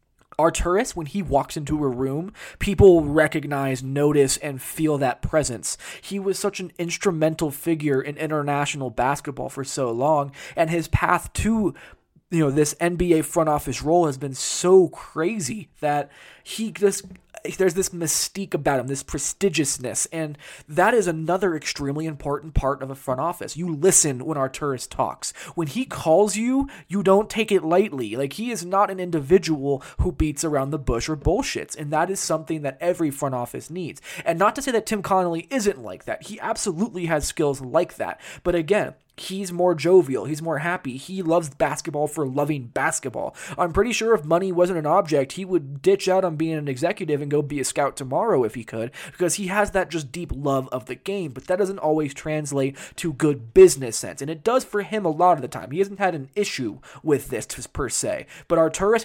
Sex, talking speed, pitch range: male, 200 wpm, 145-185 Hz